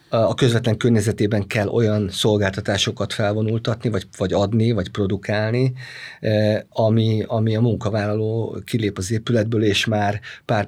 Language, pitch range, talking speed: Hungarian, 105-120 Hz, 125 wpm